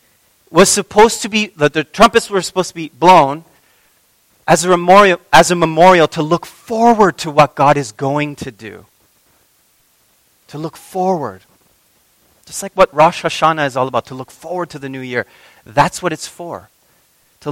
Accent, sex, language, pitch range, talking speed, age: American, male, English, 145-195 Hz, 170 wpm, 30-49